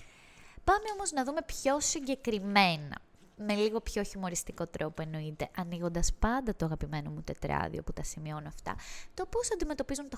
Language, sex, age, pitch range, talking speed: Greek, female, 20-39, 160-255 Hz, 155 wpm